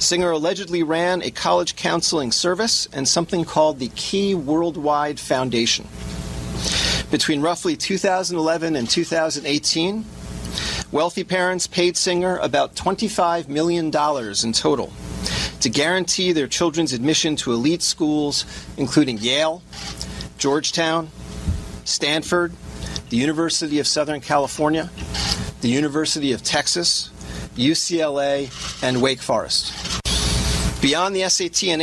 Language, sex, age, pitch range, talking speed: English, male, 40-59, 115-170 Hz, 105 wpm